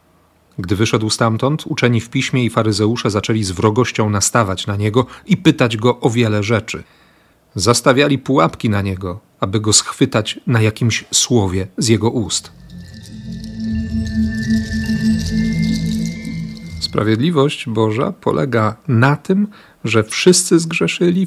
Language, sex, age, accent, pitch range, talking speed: Polish, male, 40-59, native, 105-130 Hz, 115 wpm